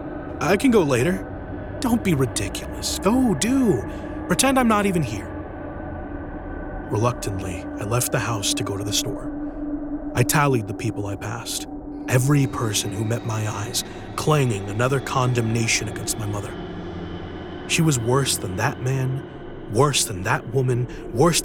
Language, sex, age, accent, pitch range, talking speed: English, male, 30-49, American, 110-150 Hz, 150 wpm